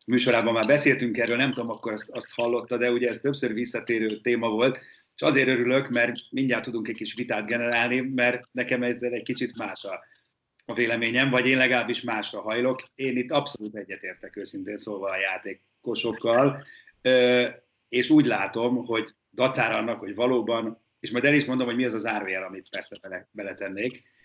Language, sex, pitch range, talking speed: Hungarian, male, 110-130 Hz, 170 wpm